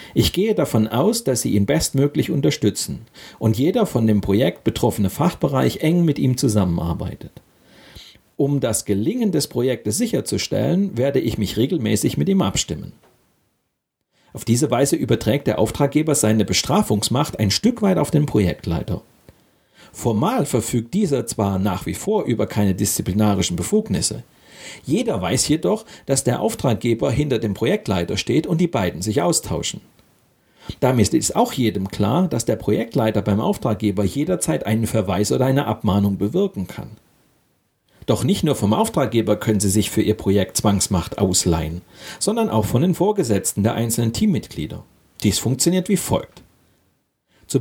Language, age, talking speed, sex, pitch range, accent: German, 40-59, 145 wpm, male, 105-140 Hz, German